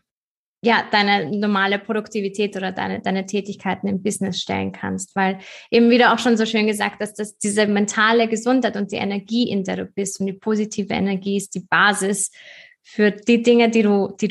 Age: 20-39